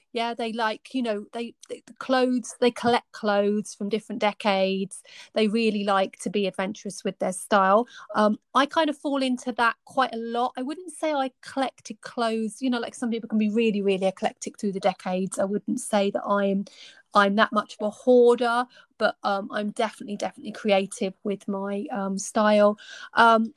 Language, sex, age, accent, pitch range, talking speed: English, female, 30-49, British, 200-240 Hz, 190 wpm